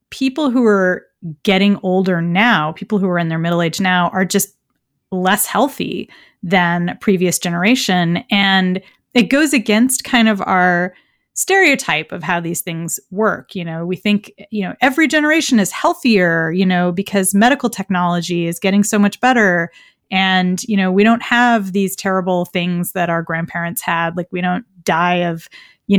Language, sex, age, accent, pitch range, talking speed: English, female, 30-49, American, 180-240 Hz, 170 wpm